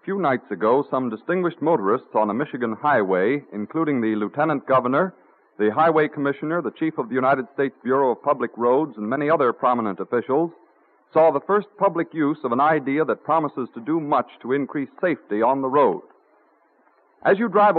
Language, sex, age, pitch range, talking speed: English, male, 50-69, 130-175 Hz, 185 wpm